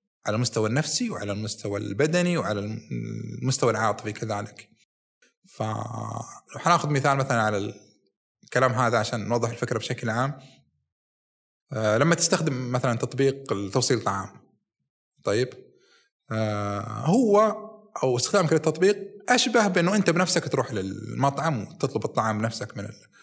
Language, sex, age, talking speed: Arabic, male, 30-49, 110 wpm